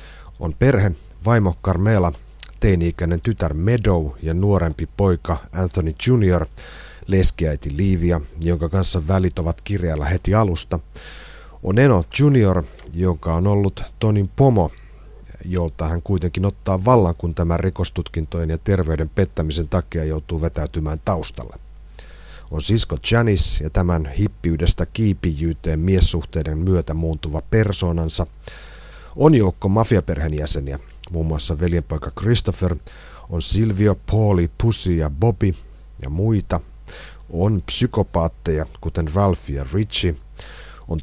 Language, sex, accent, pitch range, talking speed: Finnish, male, native, 80-100 Hz, 115 wpm